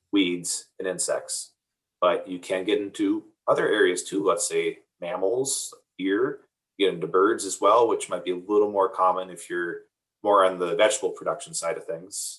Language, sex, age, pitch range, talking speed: English, male, 30-49, 325-445 Hz, 180 wpm